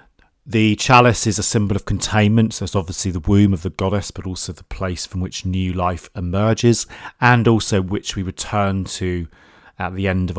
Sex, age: male, 30-49